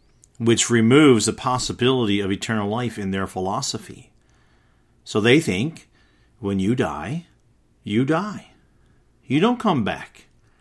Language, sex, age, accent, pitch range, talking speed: English, male, 50-69, American, 110-130 Hz, 125 wpm